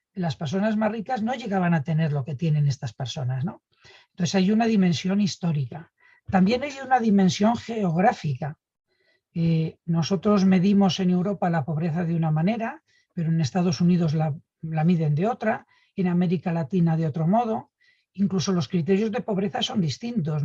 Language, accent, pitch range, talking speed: Spanish, Spanish, 165-210 Hz, 160 wpm